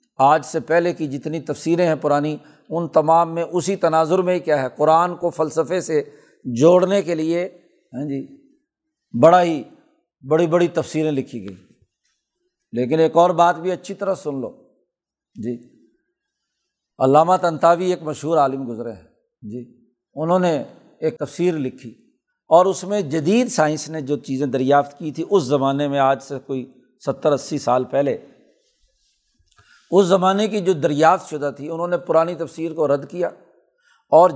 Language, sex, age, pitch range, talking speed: Urdu, male, 50-69, 140-175 Hz, 150 wpm